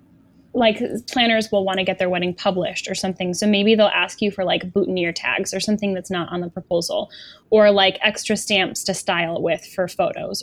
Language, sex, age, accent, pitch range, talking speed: English, female, 10-29, American, 180-205 Hz, 205 wpm